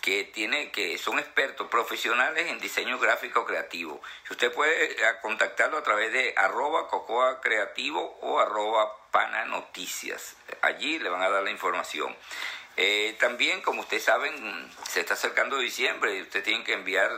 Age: 50-69